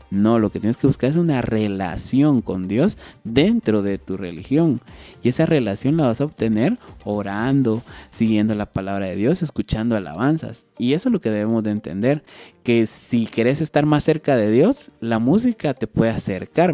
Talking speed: 185 wpm